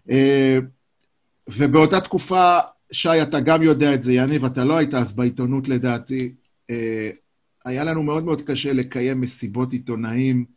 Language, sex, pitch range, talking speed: Hebrew, male, 125-170 Hz, 140 wpm